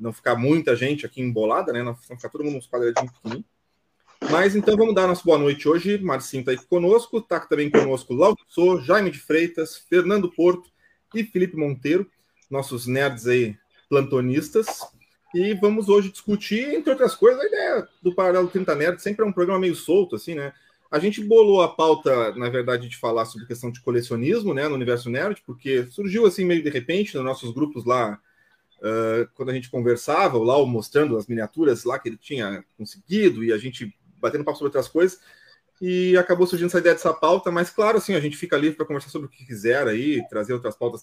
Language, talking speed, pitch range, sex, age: Portuguese, 205 wpm, 125-180 Hz, male, 30-49